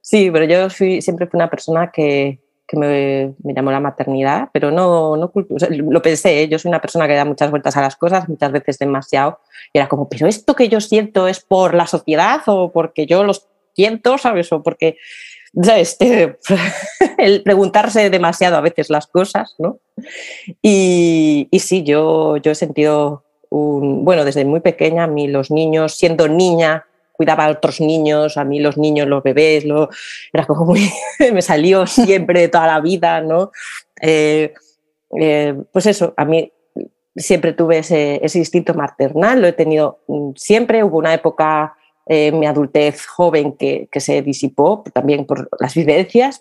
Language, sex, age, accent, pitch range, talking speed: Spanish, female, 30-49, Spanish, 150-185 Hz, 180 wpm